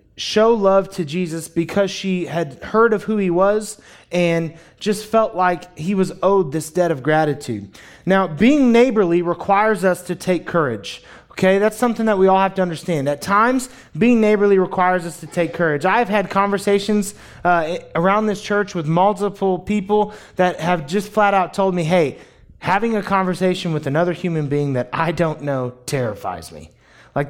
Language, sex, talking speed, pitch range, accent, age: English, male, 180 wpm, 155-195 Hz, American, 30-49